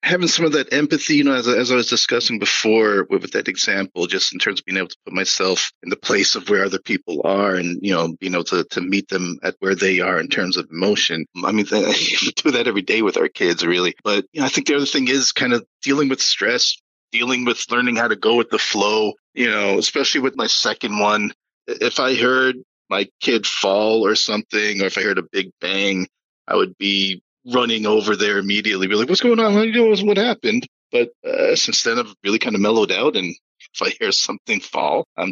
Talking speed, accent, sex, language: 240 wpm, American, male, English